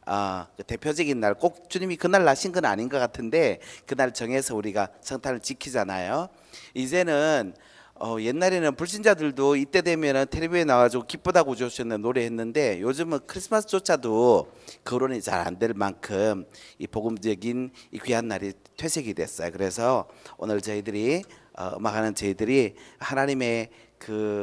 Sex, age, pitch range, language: male, 40-59, 105-140 Hz, Korean